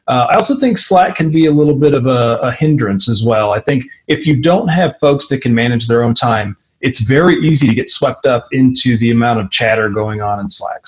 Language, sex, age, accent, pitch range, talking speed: English, male, 30-49, American, 115-150 Hz, 250 wpm